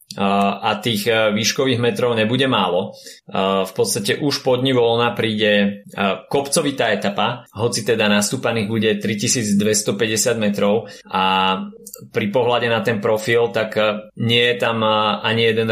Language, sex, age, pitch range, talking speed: Slovak, male, 20-39, 100-115 Hz, 120 wpm